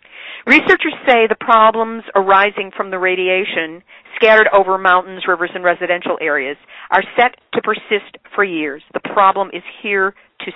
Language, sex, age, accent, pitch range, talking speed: English, female, 50-69, American, 180-220 Hz, 150 wpm